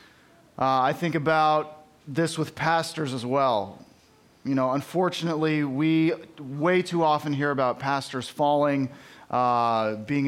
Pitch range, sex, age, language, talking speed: 135-165 Hz, male, 30-49, English, 130 wpm